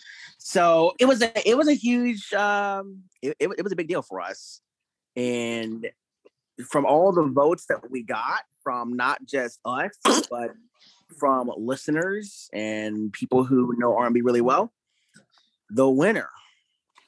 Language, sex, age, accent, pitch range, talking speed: English, male, 30-49, American, 125-200 Hz, 145 wpm